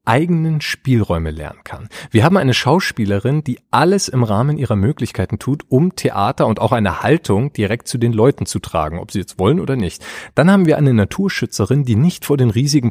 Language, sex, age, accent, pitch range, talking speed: German, male, 40-59, German, 100-140 Hz, 200 wpm